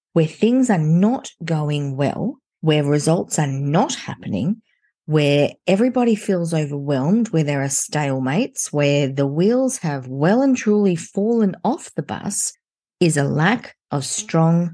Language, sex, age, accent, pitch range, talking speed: English, female, 40-59, Australian, 140-210 Hz, 145 wpm